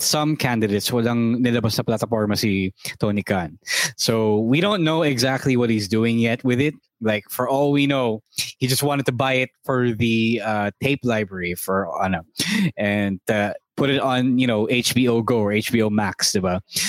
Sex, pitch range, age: male, 110-140 Hz, 20-39